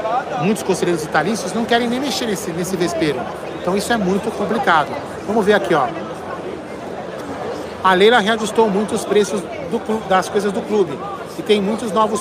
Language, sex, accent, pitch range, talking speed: Portuguese, male, Brazilian, 190-230 Hz, 165 wpm